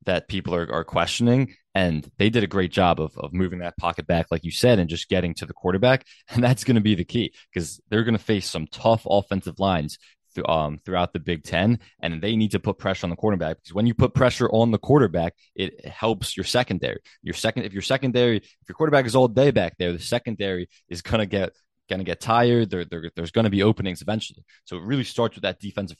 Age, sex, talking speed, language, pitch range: 20-39, male, 245 wpm, English, 90-115 Hz